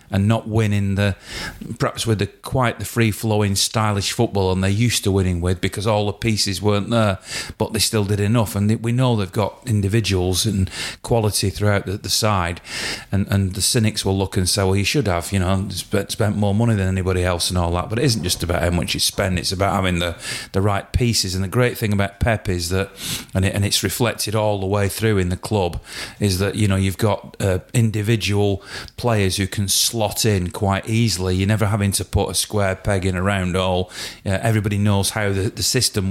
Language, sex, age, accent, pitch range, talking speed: English, male, 40-59, British, 95-110 Hz, 225 wpm